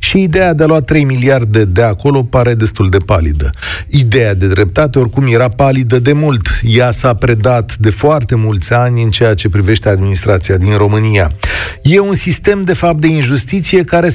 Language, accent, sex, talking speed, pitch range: Romanian, native, male, 180 wpm, 100-145 Hz